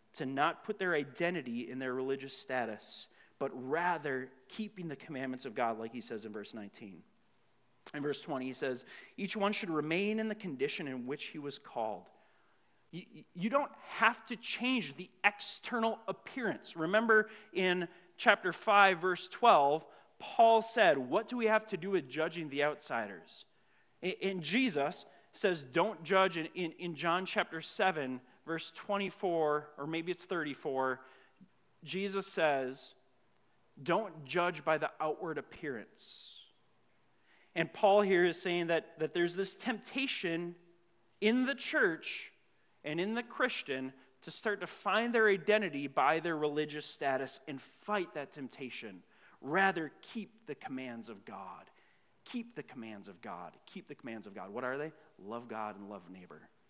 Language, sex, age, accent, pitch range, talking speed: English, male, 30-49, American, 140-205 Hz, 155 wpm